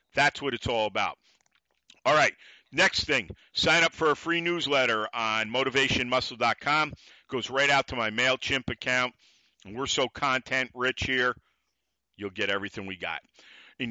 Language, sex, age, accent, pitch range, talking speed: English, male, 50-69, American, 120-145 Hz, 160 wpm